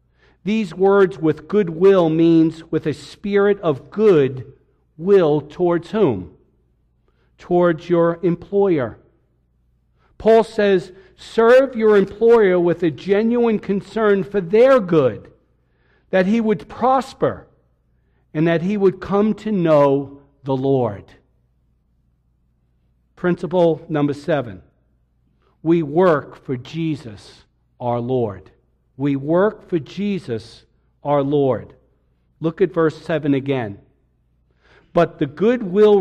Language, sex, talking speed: English, male, 110 wpm